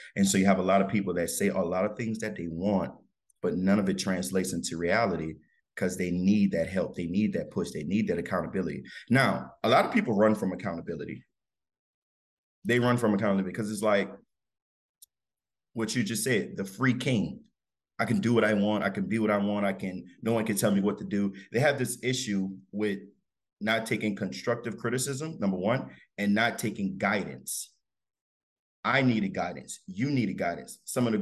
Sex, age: male, 30-49